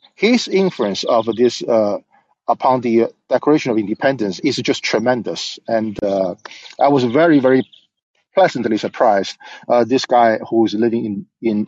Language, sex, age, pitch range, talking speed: English, male, 50-69, 110-135 Hz, 150 wpm